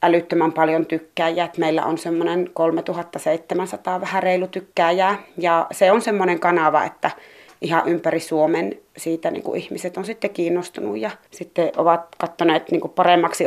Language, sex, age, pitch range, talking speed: Finnish, female, 30-49, 160-185 Hz, 130 wpm